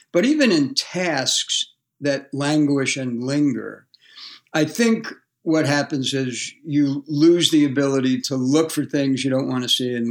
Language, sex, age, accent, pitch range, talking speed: English, male, 60-79, American, 125-150 Hz, 160 wpm